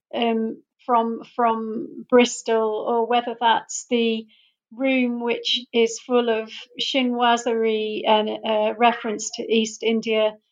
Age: 40-59